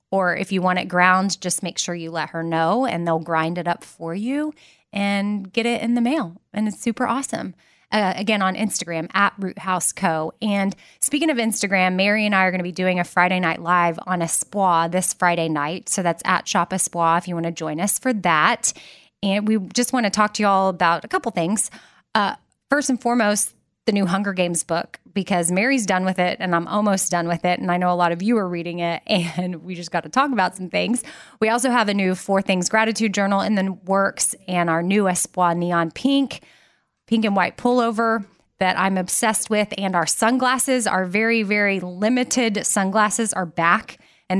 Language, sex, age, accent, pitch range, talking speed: English, female, 20-39, American, 175-215 Hz, 220 wpm